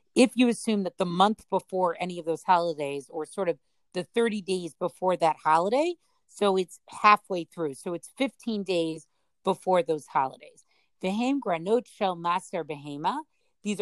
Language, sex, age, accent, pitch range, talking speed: English, female, 40-59, American, 170-210 Hz, 160 wpm